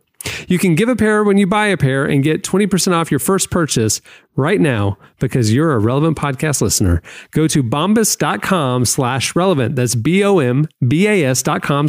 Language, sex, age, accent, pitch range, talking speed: English, male, 40-59, American, 115-160 Hz, 160 wpm